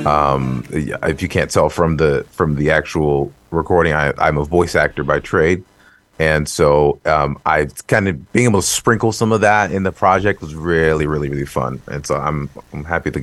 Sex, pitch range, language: male, 75-95 Hz, English